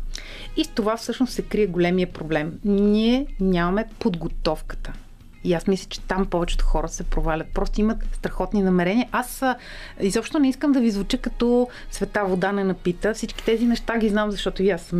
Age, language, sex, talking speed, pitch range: 30-49, Bulgarian, female, 180 wpm, 190-255 Hz